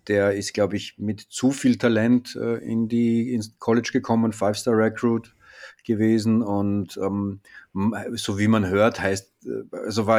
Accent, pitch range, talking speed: German, 95-110 Hz, 145 wpm